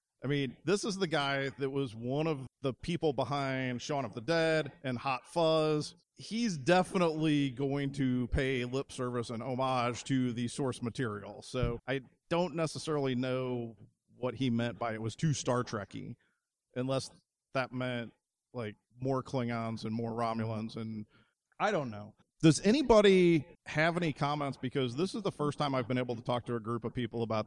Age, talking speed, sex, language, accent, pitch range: 40-59, 180 wpm, male, English, American, 120-155 Hz